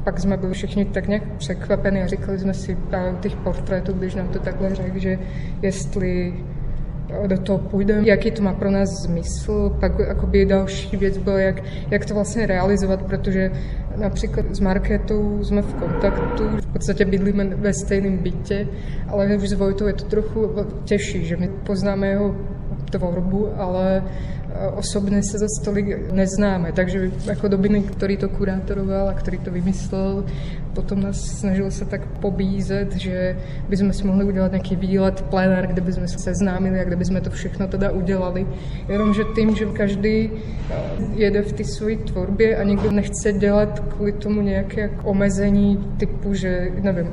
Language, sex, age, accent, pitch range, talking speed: Czech, female, 20-39, native, 185-200 Hz, 160 wpm